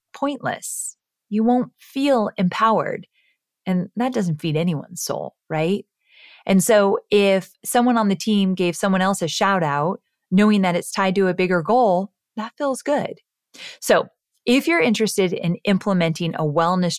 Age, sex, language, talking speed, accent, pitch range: 30-49, female, English, 155 wpm, American, 165-225 Hz